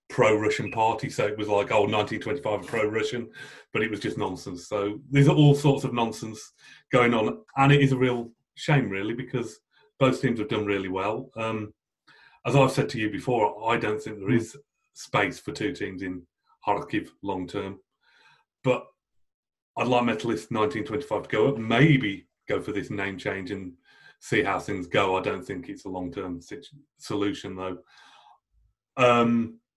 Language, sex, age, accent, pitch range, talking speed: English, male, 30-49, British, 100-125 Hz, 180 wpm